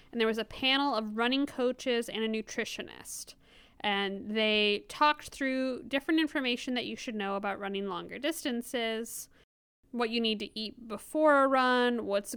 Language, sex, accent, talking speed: English, female, American, 165 wpm